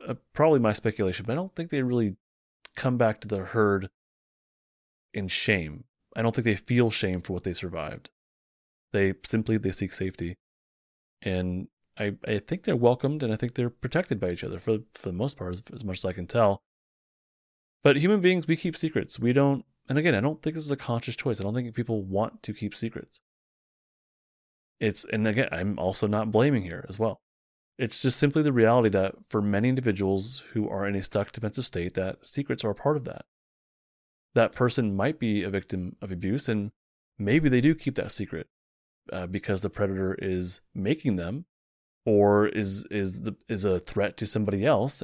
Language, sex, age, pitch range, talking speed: English, male, 30-49, 95-125 Hz, 195 wpm